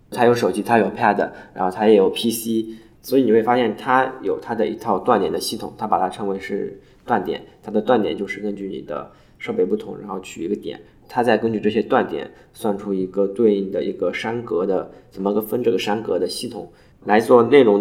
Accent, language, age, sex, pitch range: native, Chinese, 20-39, male, 100-115 Hz